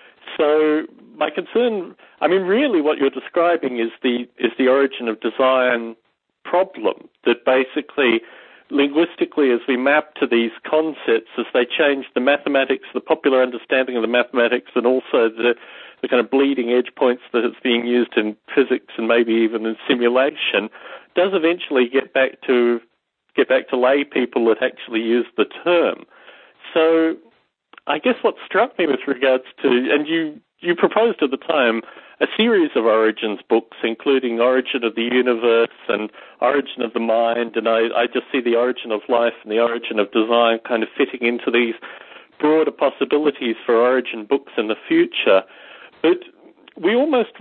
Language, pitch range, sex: English, 120-150 Hz, male